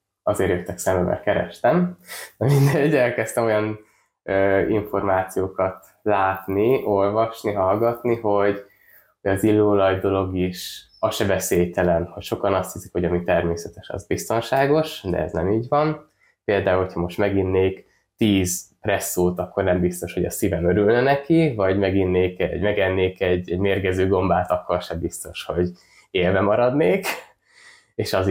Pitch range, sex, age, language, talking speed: 90-105 Hz, male, 20-39, Hungarian, 140 wpm